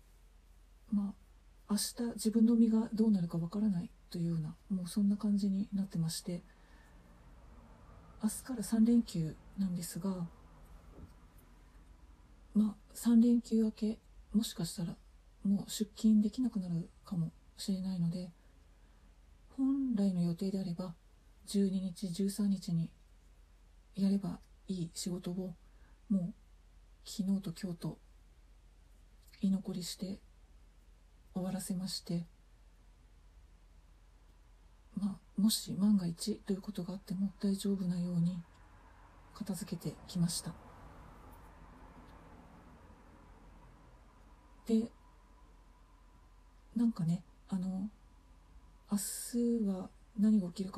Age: 40-59